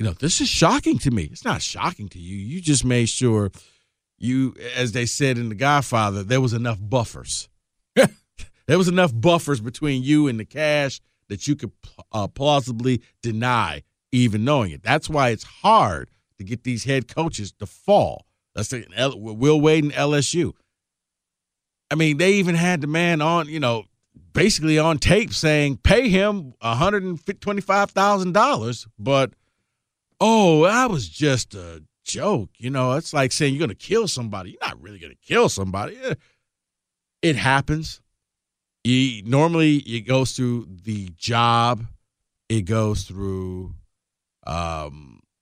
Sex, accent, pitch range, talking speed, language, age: male, American, 100-145 Hz, 155 wpm, English, 50-69